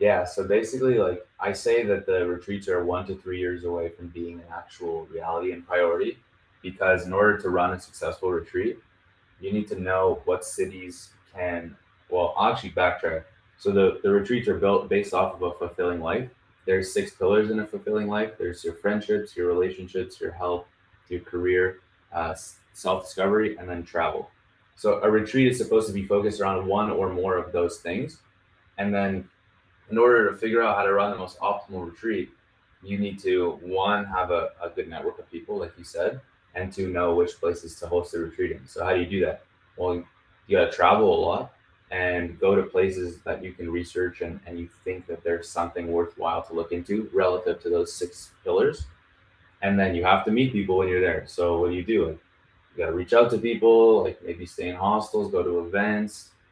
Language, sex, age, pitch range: English, male, 20-39, 90-110 Hz